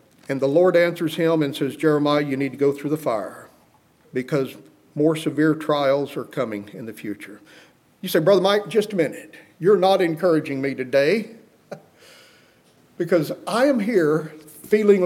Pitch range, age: 140-180 Hz, 50-69